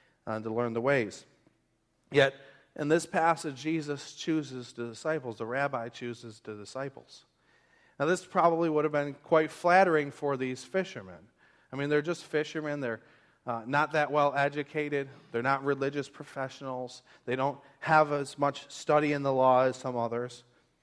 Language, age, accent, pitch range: English, 40-59, American, 140-170 Hz